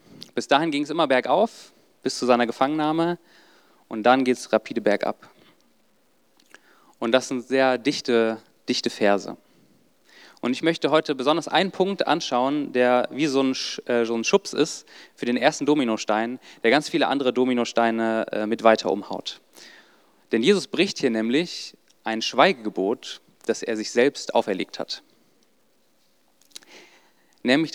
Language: German